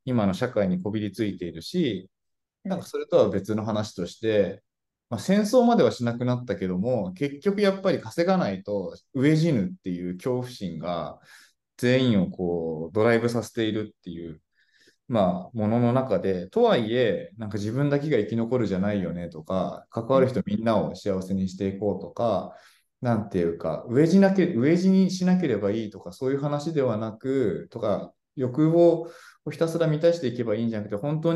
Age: 20-39